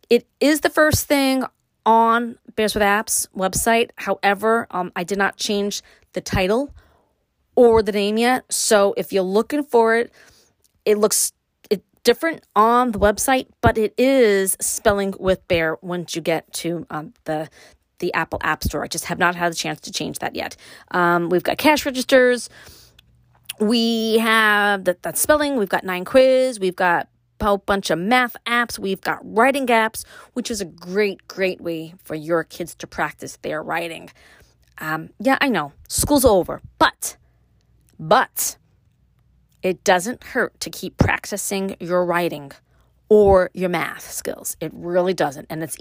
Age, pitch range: 30-49, 180-240 Hz